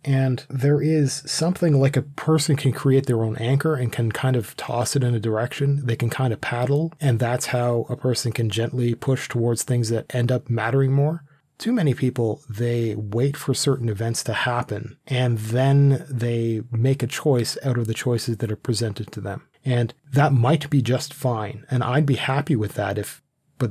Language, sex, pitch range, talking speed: English, male, 120-145 Hz, 200 wpm